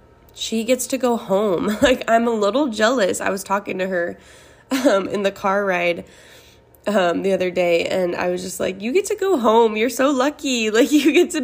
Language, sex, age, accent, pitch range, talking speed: English, female, 20-39, American, 180-220 Hz, 215 wpm